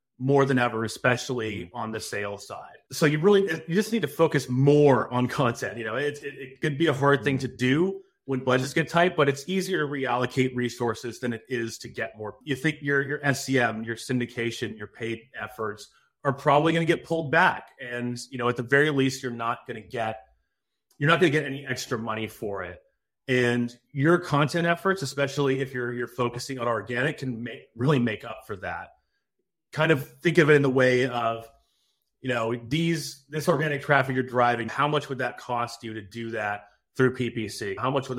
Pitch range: 120-140 Hz